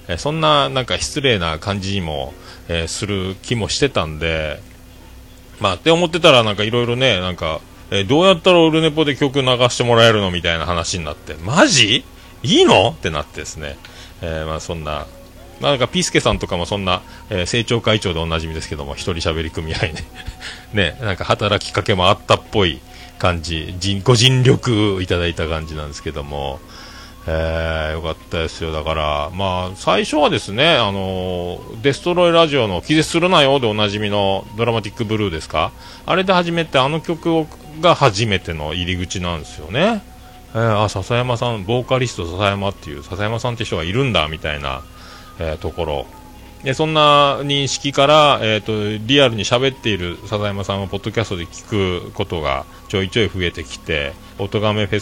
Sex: male